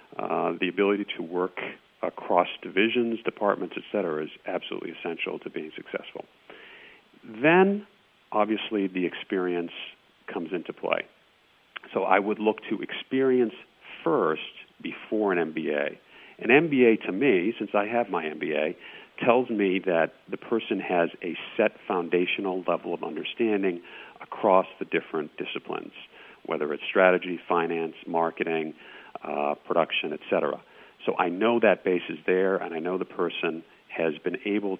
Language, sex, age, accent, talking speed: English, male, 50-69, American, 140 wpm